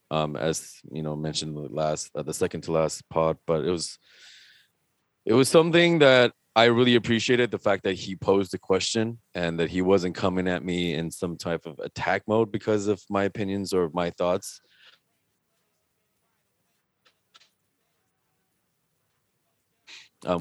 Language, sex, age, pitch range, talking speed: English, male, 20-39, 85-110 Hz, 150 wpm